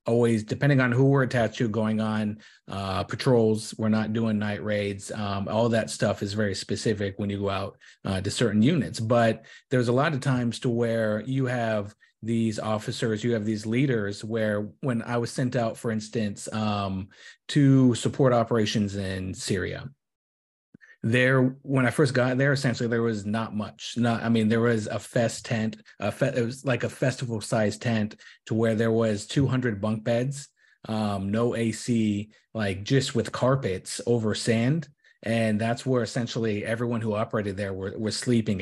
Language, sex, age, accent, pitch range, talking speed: English, male, 30-49, American, 105-125 Hz, 175 wpm